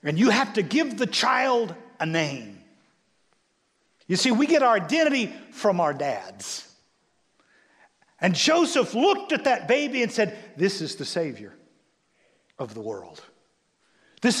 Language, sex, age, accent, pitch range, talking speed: English, male, 50-69, American, 160-255 Hz, 140 wpm